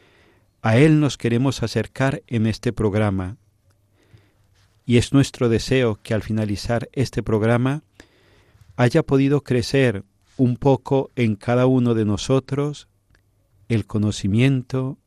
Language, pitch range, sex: Spanish, 105-125 Hz, male